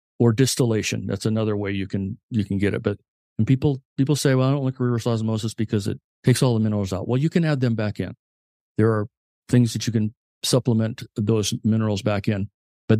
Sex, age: male, 50-69